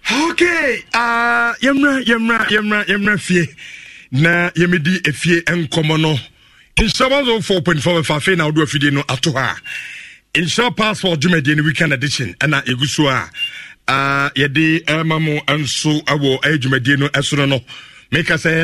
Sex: male